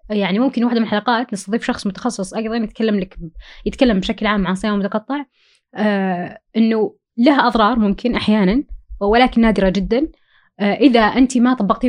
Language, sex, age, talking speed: Arabic, female, 20-39, 150 wpm